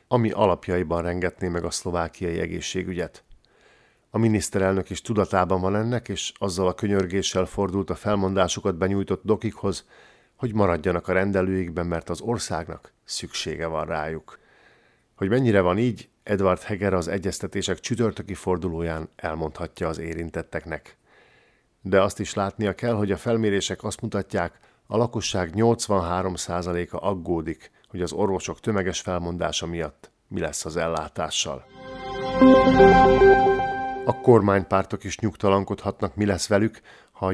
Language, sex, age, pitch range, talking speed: Hungarian, male, 50-69, 90-105 Hz, 125 wpm